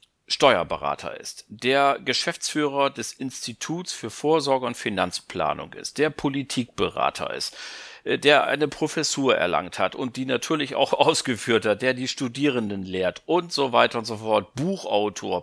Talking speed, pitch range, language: 140 wpm, 115-145 Hz, German